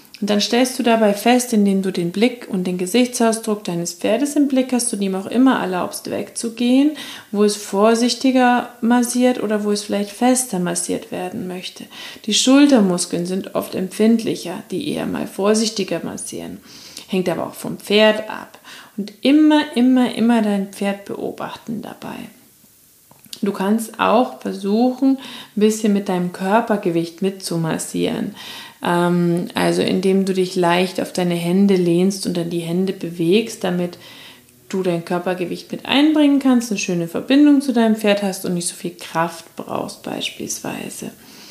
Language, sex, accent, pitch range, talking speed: German, female, German, 185-235 Hz, 150 wpm